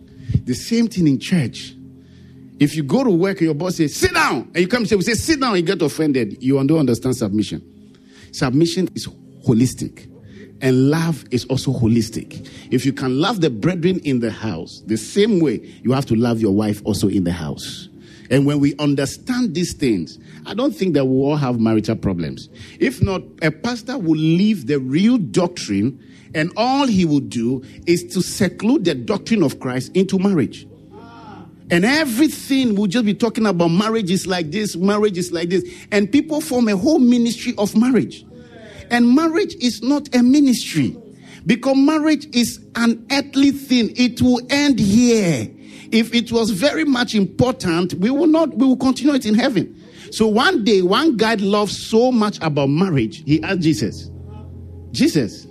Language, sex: English, male